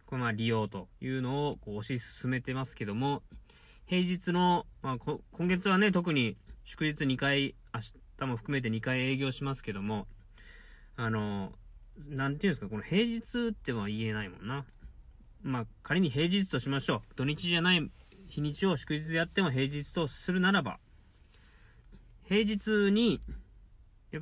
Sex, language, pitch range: male, Japanese, 105-160 Hz